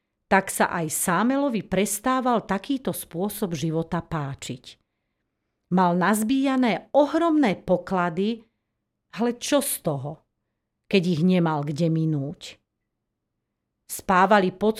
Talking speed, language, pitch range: 95 wpm, Slovak, 165-215 Hz